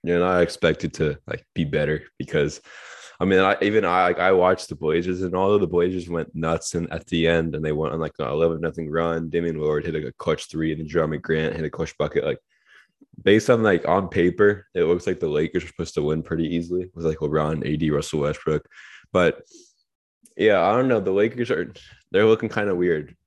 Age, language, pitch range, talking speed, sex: 20-39, English, 75-90 Hz, 230 wpm, male